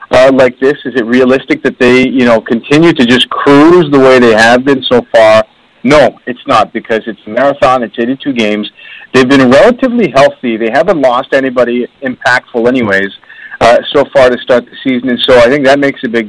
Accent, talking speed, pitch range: American, 205 wpm, 115-145 Hz